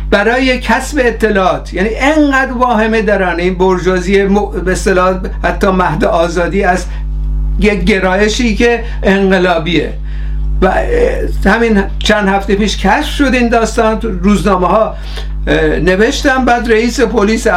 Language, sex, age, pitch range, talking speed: Persian, male, 60-79, 170-215 Hz, 110 wpm